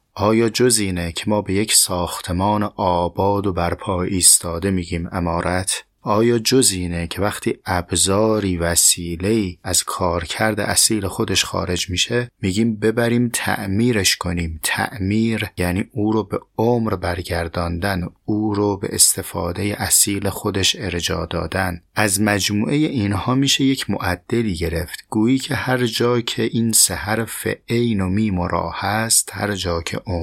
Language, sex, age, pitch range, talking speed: Persian, male, 30-49, 90-115 Hz, 135 wpm